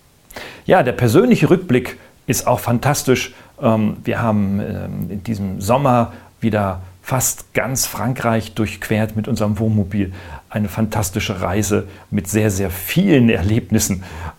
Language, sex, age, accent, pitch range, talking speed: German, male, 40-59, German, 95-120 Hz, 115 wpm